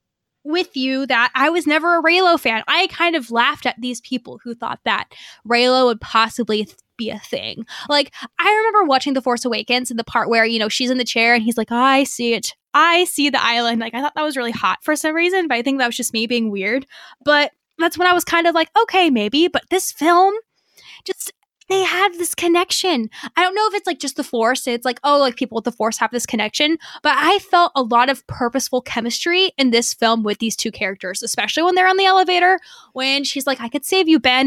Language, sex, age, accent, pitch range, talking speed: English, female, 10-29, American, 240-325 Hz, 245 wpm